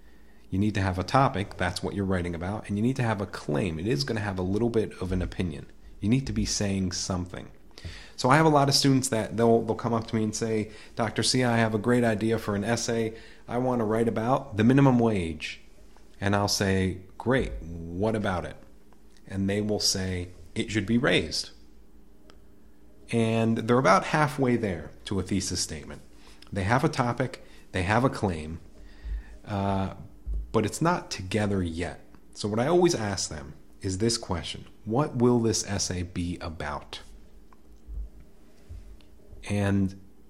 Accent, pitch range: American, 90-115 Hz